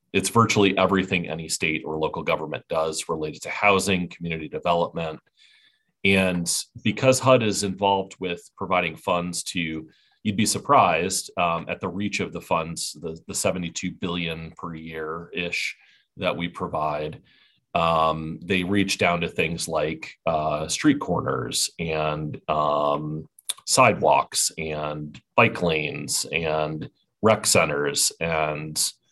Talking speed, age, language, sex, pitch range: 130 wpm, 30-49, English, male, 80-100 Hz